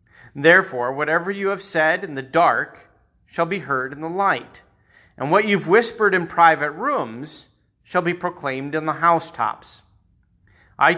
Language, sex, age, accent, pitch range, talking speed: English, male, 40-59, American, 140-210 Hz, 160 wpm